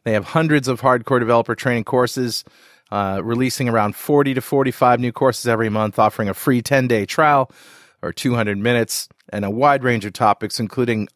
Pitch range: 115-145 Hz